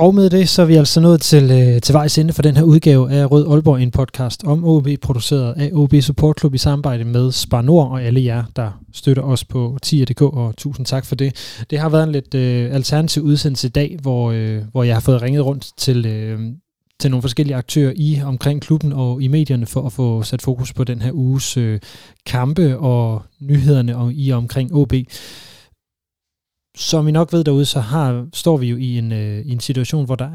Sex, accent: male, native